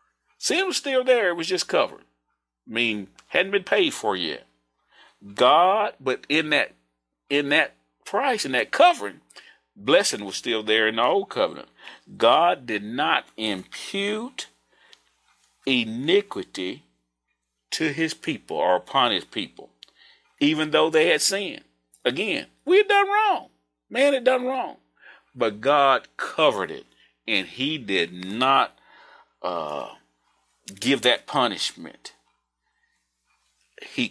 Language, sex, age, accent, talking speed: English, male, 40-59, American, 125 wpm